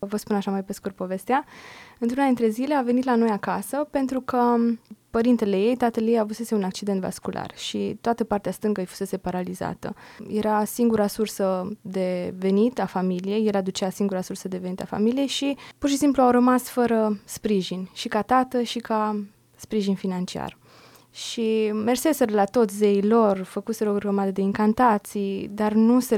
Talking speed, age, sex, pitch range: 170 wpm, 20-39, female, 195-235 Hz